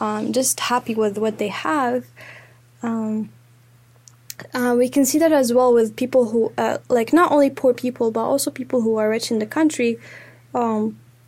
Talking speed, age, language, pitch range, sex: 180 wpm, 10-29, English, 215-250 Hz, female